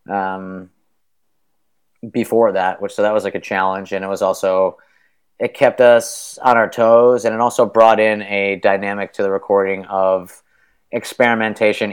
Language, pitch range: English, 95-115 Hz